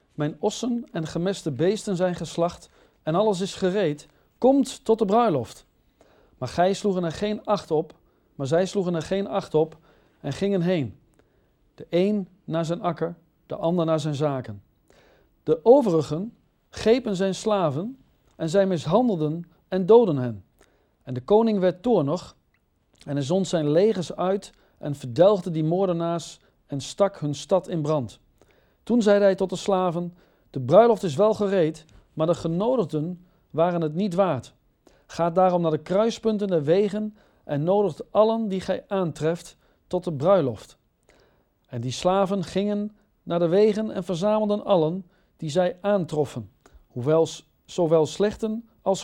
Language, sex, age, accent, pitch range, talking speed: Dutch, male, 50-69, Dutch, 155-200 Hz, 155 wpm